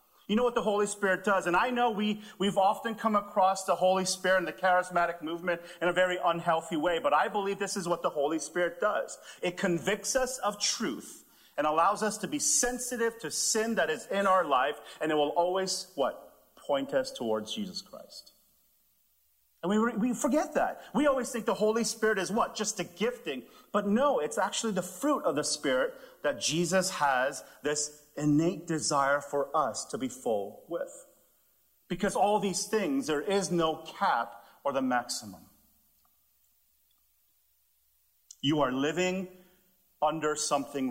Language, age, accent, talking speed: English, 40-59, American, 175 wpm